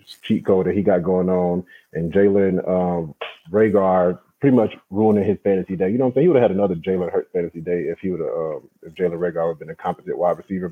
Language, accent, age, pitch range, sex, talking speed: English, American, 30-49, 95-120 Hz, male, 225 wpm